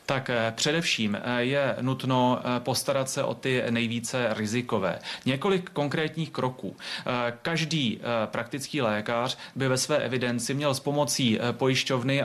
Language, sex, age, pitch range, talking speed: Czech, male, 30-49, 115-130 Hz, 120 wpm